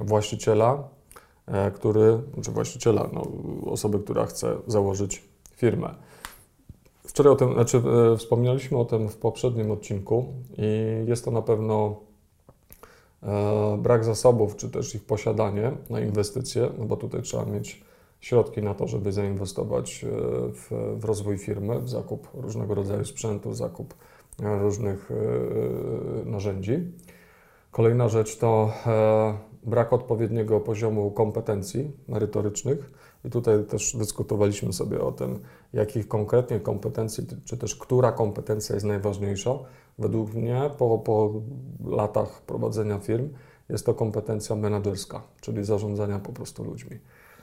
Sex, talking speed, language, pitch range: male, 120 wpm, Polish, 105-120 Hz